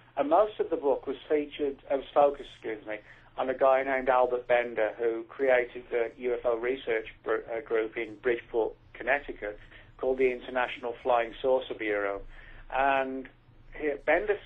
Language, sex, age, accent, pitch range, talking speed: English, male, 50-69, British, 115-135 Hz, 150 wpm